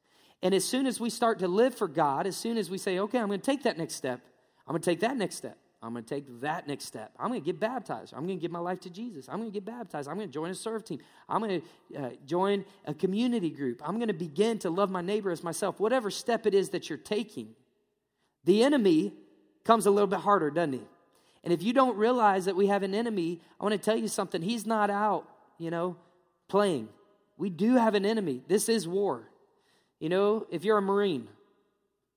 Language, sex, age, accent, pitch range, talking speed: English, male, 30-49, American, 170-225 Hz, 245 wpm